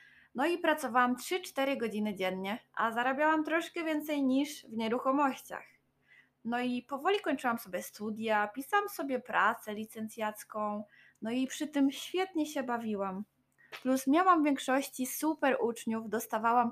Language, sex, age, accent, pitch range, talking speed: Polish, female, 20-39, native, 225-300 Hz, 135 wpm